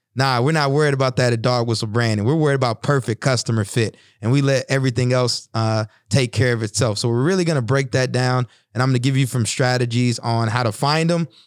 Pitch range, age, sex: 120-150 Hz, 30-49, male